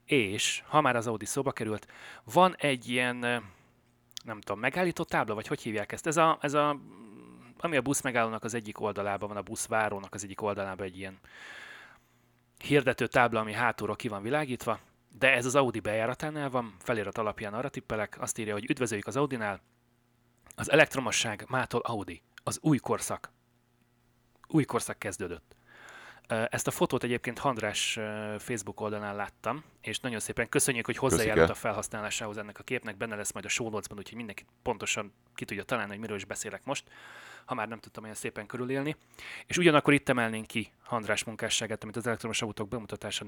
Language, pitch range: Hungarian, 105-125 Hz